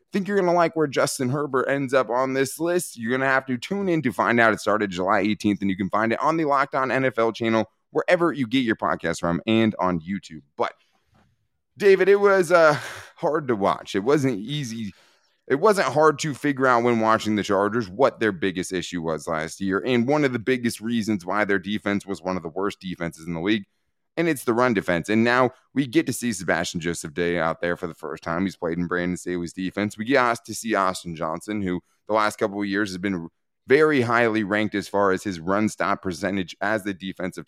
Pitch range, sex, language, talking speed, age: 90-130 Hz, male, English, 235 wpm, 20-39